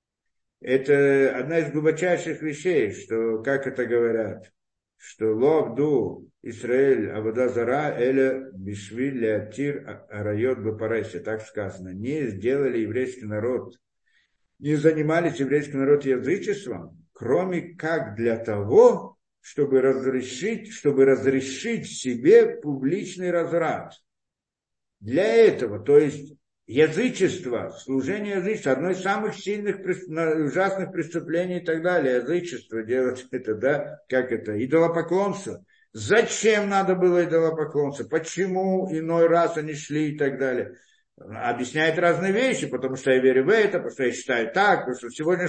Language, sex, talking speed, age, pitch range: Russian, male, 120 wpm, 60-79, 130-195 Hz